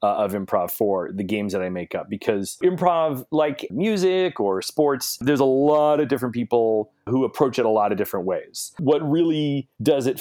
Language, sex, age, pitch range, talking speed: English, male, 30-49, 100-150 Hz, 200 wpm